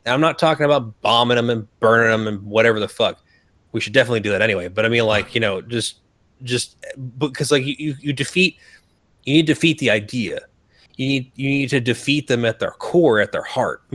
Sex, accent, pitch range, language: male, American, 105-135 Hz, English